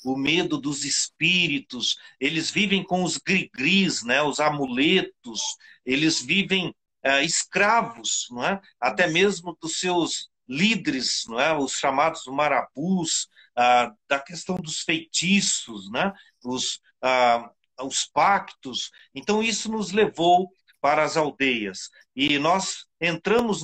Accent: Brazilian